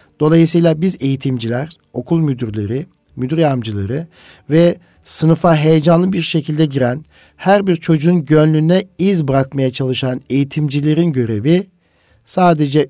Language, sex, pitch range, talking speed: Turkish, male, 130-165 Hz, 105 wpm